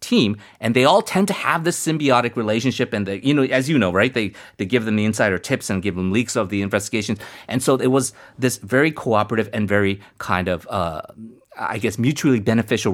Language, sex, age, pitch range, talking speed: English, male, 30-49, 105-140 Hz, 225 wpm